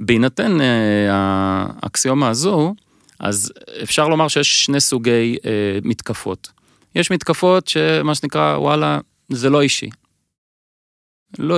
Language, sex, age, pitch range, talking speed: English, male, 30-49, 105-140 Hz, 105 wpm